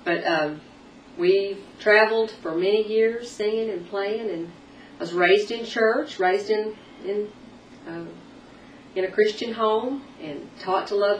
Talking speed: 150 wpm